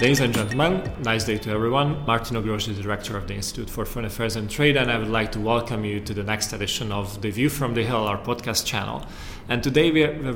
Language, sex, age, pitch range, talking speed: Hungarian, male, 30-49, 110-125 Hz, 255 wpm